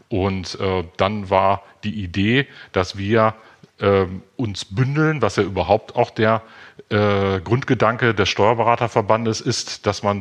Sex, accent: male, German